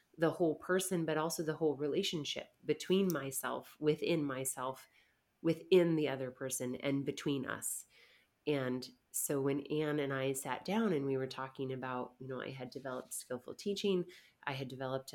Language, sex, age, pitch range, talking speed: English, female, 30-49, 135-160 Hz, 165 wpm